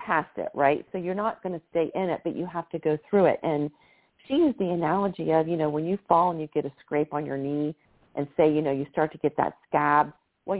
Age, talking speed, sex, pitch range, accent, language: 50-69, 265 wpm, female, 150-180 Hz, American, English